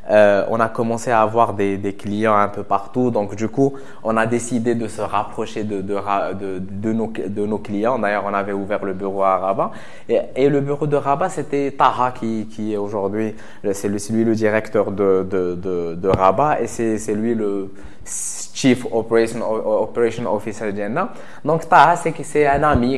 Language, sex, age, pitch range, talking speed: English, male, 20-39, 105-140 Hz, 200 wpm